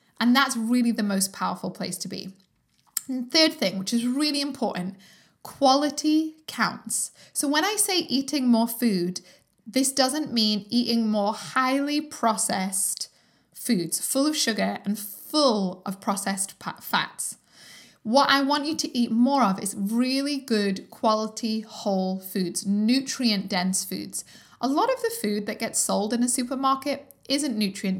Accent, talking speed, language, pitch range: British, 150 wpm, English, 205-275 Hz